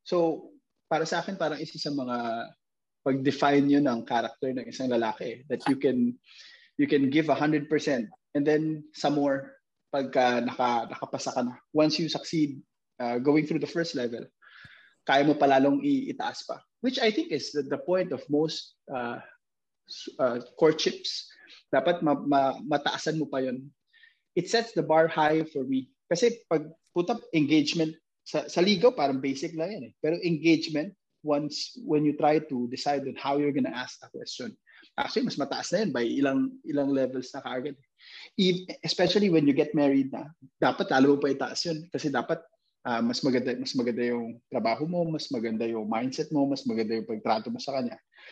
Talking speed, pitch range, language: 180 wpm, 135-170 Hz, Filipino